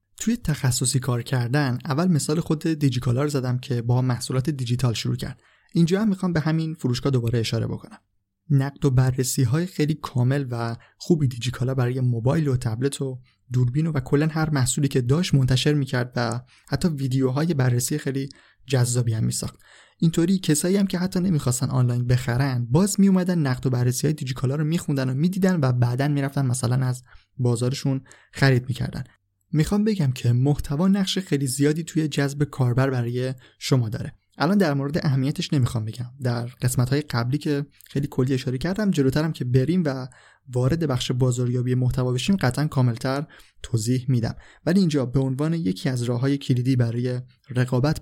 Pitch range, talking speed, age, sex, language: 125-150 Hz, 165 wpm, 20-39, male, Persian